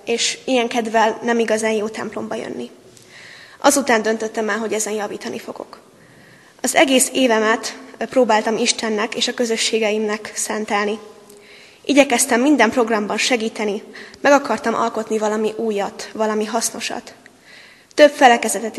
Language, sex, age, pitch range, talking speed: Hungarian, female, 20-39, 215-235 Hz, 120 wpm